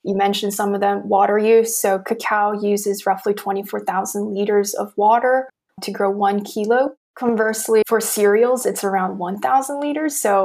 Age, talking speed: 20-39, 165 wpm